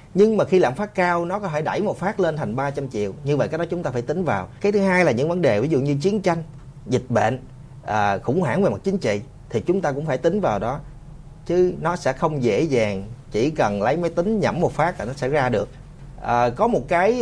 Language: Vietnamese